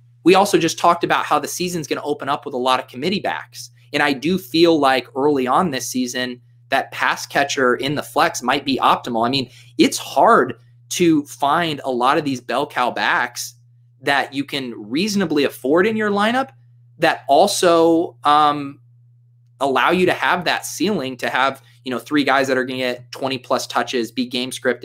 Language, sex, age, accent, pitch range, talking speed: English, male, 20-39, American, 120-145 Hz, 200 wpm